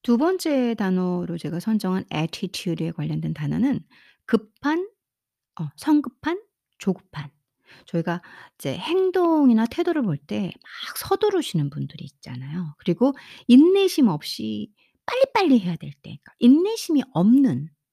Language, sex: Korean, female